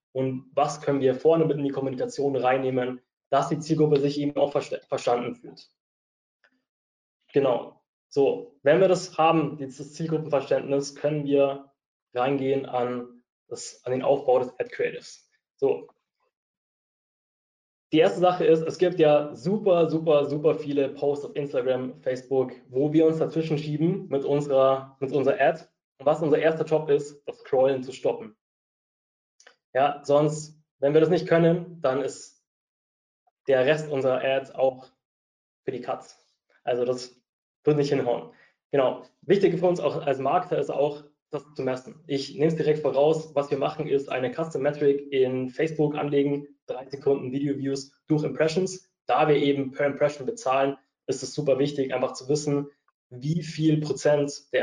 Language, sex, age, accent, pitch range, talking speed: German, male, 20-39, German, 135-155 Hz, 155 wpm